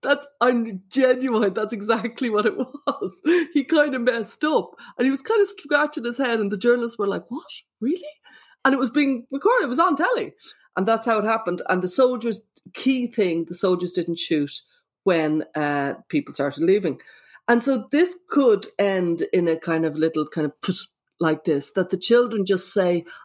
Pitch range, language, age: 180-265 Hz, English, 30-49